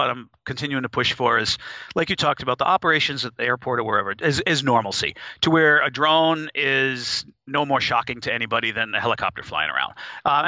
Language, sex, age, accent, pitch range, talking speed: English, male, 40-59, American, 115-145 Hz, 210 wpm